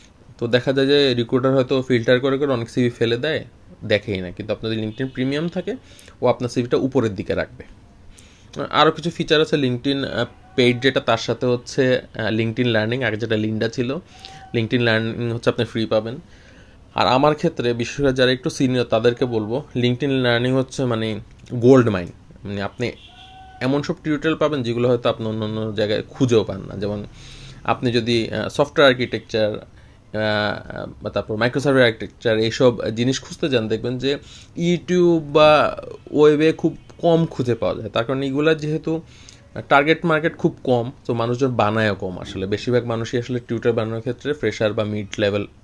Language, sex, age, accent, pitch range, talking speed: Bengali, male, 30-49, native, 110-135 Hz, 165 wpm